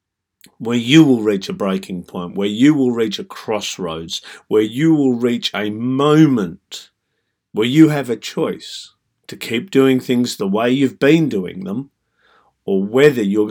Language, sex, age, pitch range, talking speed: English, male, 50-69, 105-135 Hz, 165 wpm